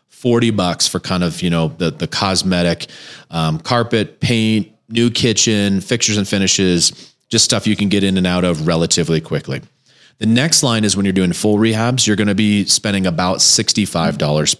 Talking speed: 185 wpm